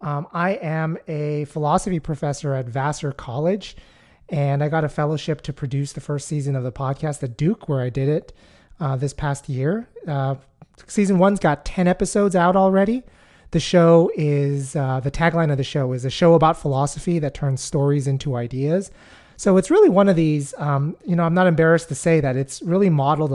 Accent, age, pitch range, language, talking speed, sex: American, 30-49, 135-160 Hz, English, 200 wpm, male